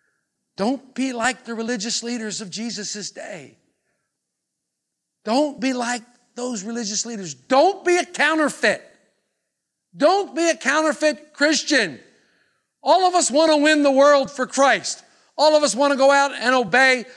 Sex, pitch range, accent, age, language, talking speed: male, 240-310 Hz, American, 50-69, English, 150 wpm